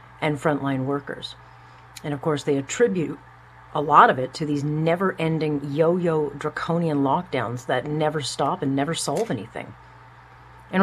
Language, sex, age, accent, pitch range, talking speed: English, female, 40-59, American, 150-200 Hz, 145 wpm